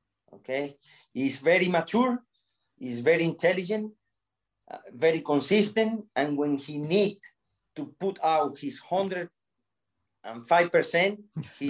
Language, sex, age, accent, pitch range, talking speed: English, male, 40-59, Spanish, 140-195 Hz, 120 wpm